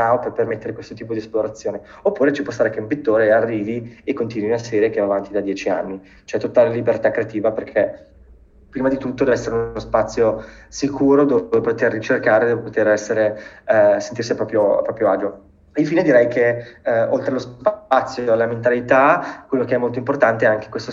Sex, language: male, Italian